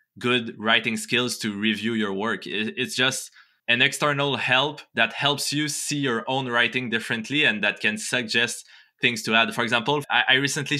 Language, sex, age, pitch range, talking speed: English, male, 20-39, 105-130 Hz, 170 wpm